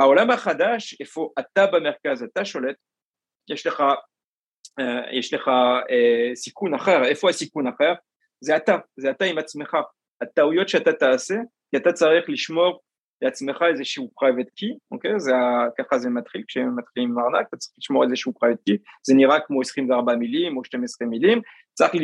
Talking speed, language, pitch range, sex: 155 wpm, Hebrew, 130-190 Hz, male